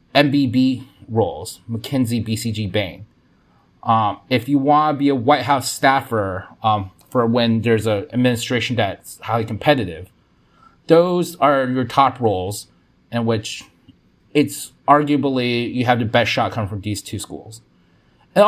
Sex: male